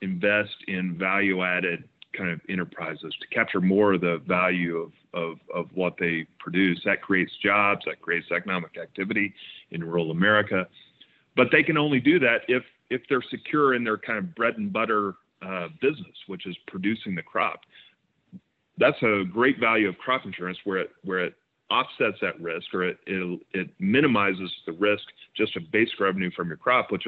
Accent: American